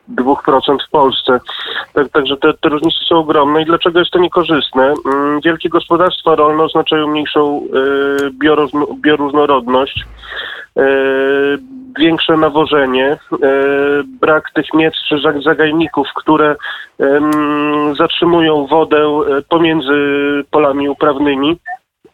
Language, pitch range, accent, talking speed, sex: Polish, 150-165 Hz, native, 105 wpm, male